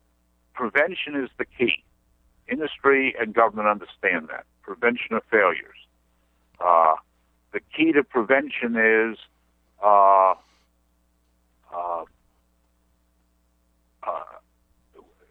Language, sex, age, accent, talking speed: English, male, 60-79, American, 80 wpm